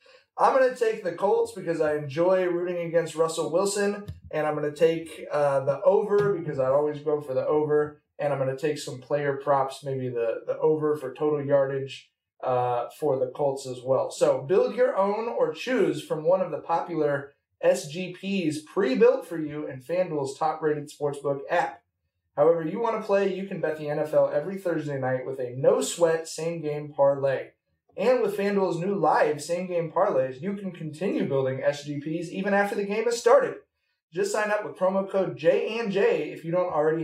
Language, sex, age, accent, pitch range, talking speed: English, male, 20-39, American, 145-190 Hz, 190 wpm